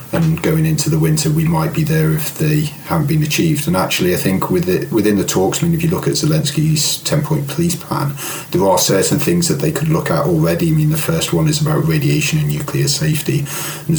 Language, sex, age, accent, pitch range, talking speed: English, male, 40-59, British, 150-165 Hz, 235 wpm